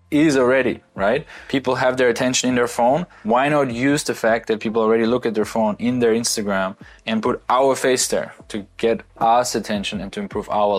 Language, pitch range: English, 105-120 Hz